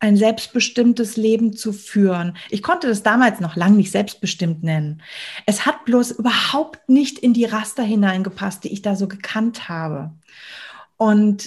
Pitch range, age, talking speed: 200-245 Hz, 30-49, 155 wpm